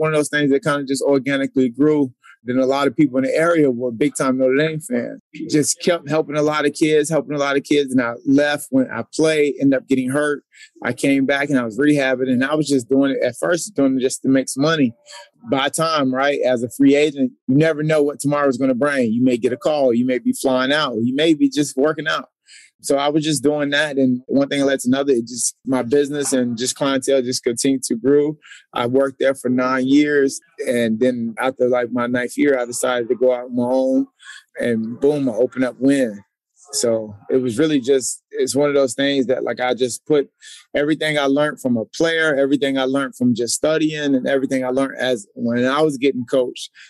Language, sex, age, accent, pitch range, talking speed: English, male, 20-39, American, 125-145 Hz, 240 wpm